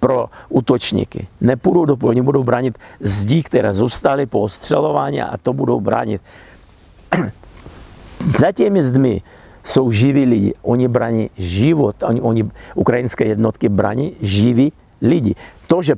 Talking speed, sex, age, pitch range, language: 125 wpm, male, 60-79, 105-145 Hz, Slovak